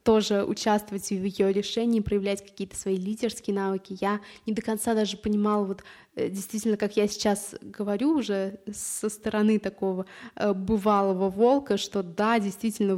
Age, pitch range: 20-39, 200-230 Hz